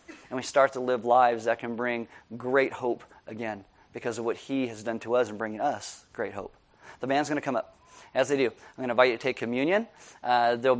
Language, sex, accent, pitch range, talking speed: English, male, American, 120-140 Hz, 245 wpm